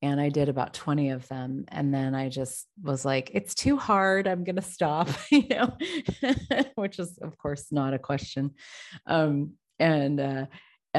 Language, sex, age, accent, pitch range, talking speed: English, female, 30-49, American, 140-165 Hz, 175 wpm